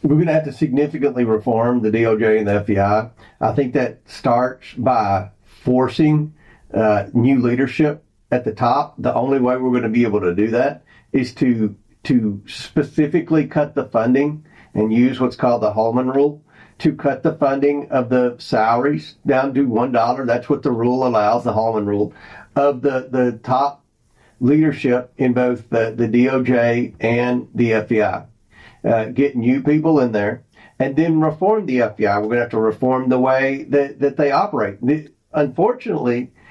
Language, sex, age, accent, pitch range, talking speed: English, male, 50-69, American, 115-150 Hz, 170 wpm